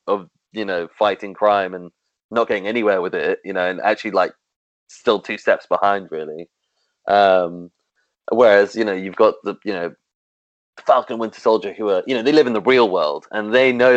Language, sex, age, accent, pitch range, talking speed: English, male, 30-49, British, 90-115 Hz, 200 wpm